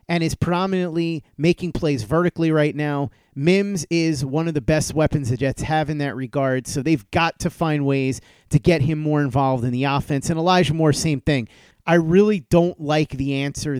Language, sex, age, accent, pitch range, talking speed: English, male, 30-49, American, 140-170 Hz, 200 wpm